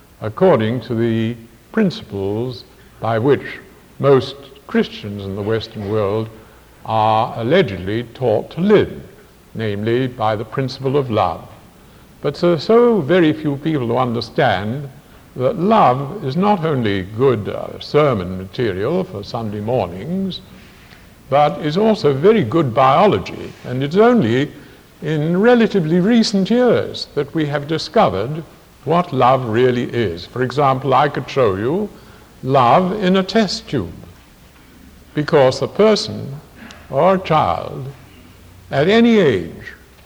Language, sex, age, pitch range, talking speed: English, male, 60-79, 110-175 Hz, 125 wpm